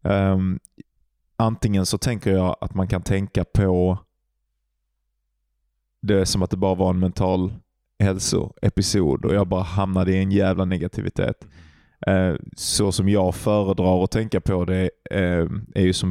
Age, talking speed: 20-39, 150 wpm